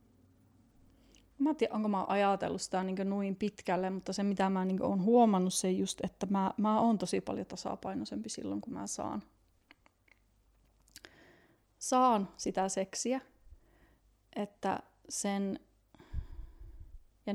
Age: 30-49